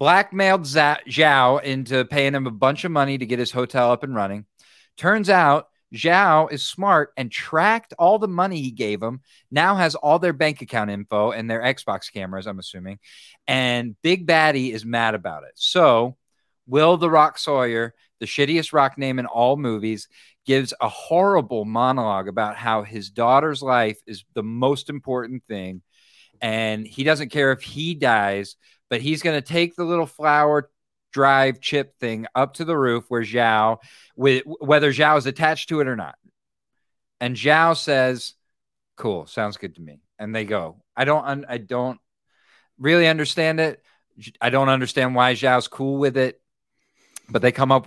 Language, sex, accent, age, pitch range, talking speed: English, male, American, 40-59, 115-150 Hz, 170 wpm